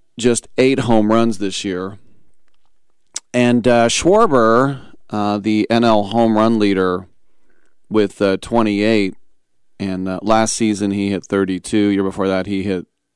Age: 40-59